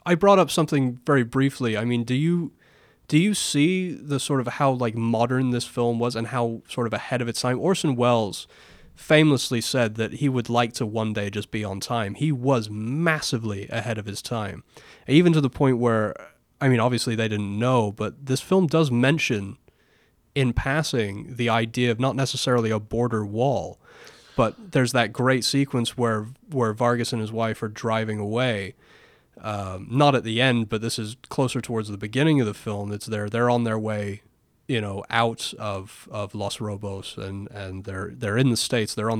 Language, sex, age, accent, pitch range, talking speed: English, male, 20-39, American, 105-130 Hz, 195 wpm